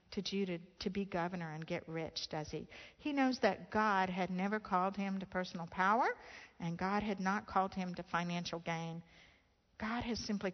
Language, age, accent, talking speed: English, 60-79, American, 180 wpm